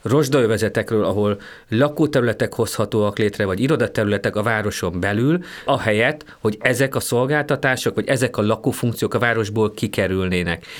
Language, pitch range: Hungarian, 105-130 Hz